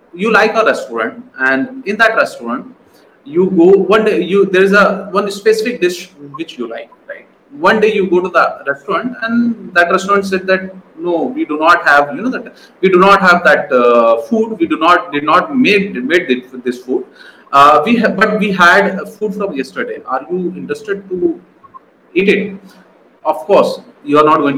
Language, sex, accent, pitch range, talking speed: Hindi, male, native, 165-220 Hz, 195 wpm